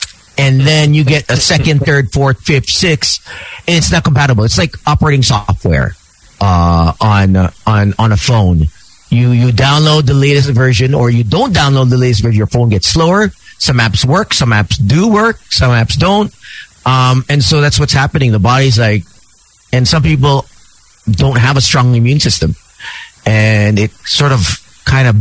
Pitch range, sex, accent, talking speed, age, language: 100-135 Hz, male, American, 180 wpm, 40-59, English